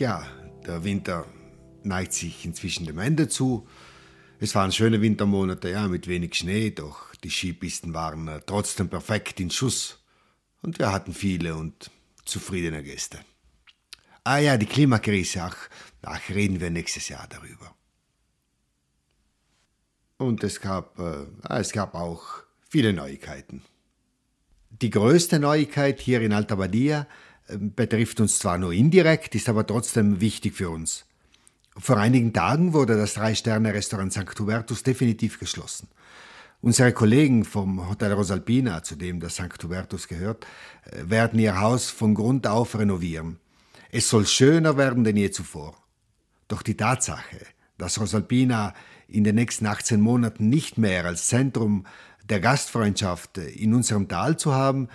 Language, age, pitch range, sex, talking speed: Italian, 50-69, 90-115 Hz, male, 140 wpm